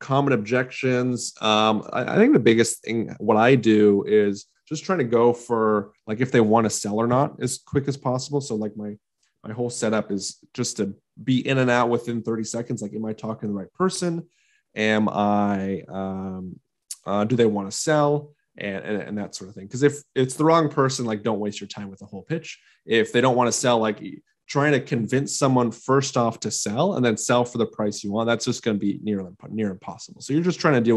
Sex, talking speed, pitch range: male, 235 wpm, 105-125 Hz